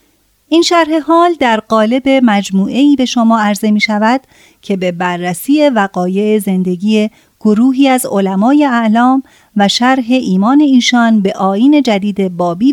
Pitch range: 195-255 Hz